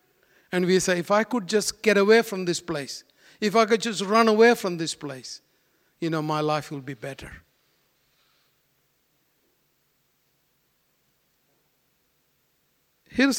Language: English